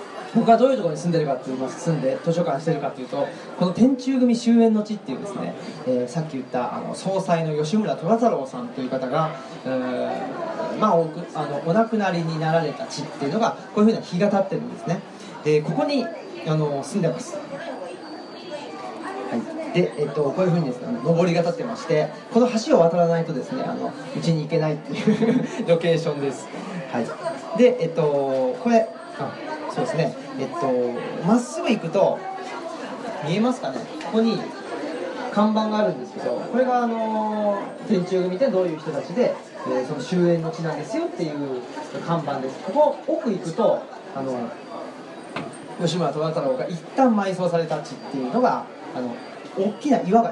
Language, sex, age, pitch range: Japanese, male, 30-49, 160-230 Hz